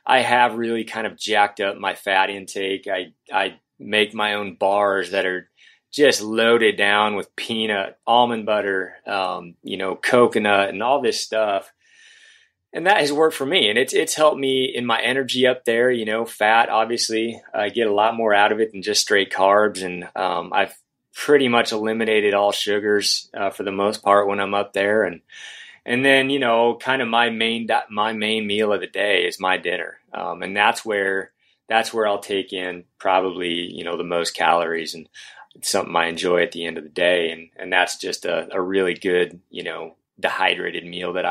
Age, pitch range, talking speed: 20-39, 95-120 Hz, 200 wpm